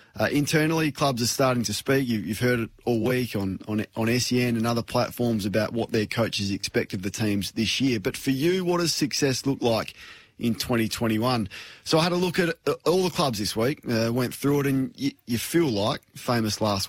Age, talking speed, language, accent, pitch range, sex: 20-39, 220 wpm, English, Australian, 110-140 Hz, male